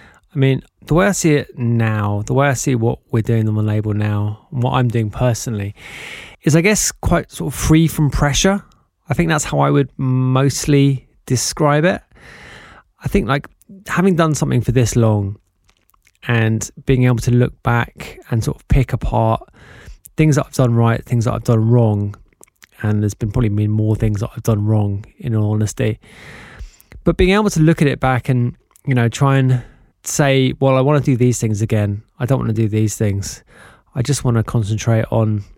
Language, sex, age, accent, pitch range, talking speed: English, male, 20-39, British, 110-135 Hz, 205 wpm